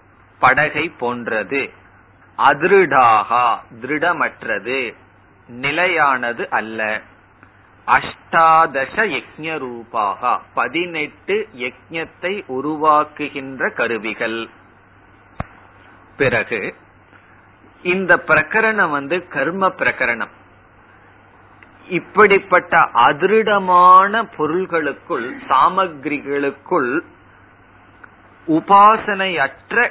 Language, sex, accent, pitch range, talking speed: Tamil, male, native, 110-165 Hz, 45 wpm